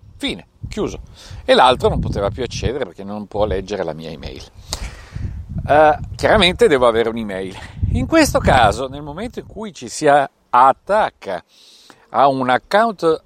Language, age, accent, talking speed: Italian, 50-69, native, 150 wpm